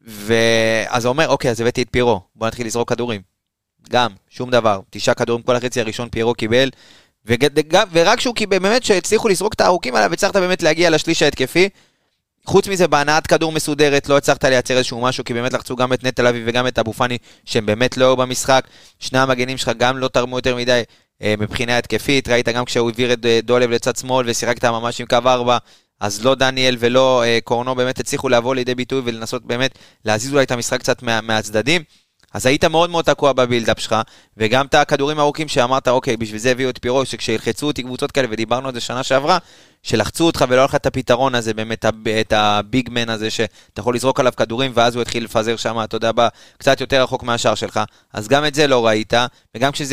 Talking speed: 170 wpm